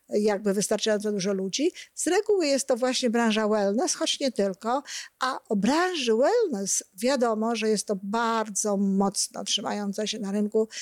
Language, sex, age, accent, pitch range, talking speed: Polish, female, 50-69, native, 205-245 Hz, 155 wpm